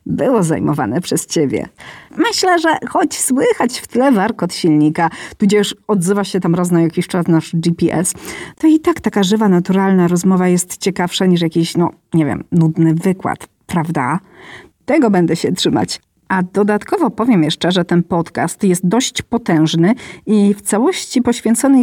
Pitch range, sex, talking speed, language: 170-245 Hz, female, 155 wpm, Polish